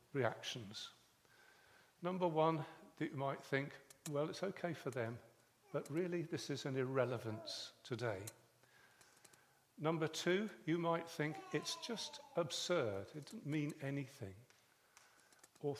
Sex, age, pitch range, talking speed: male, 50-69, 120-160 Hz, 120 wpm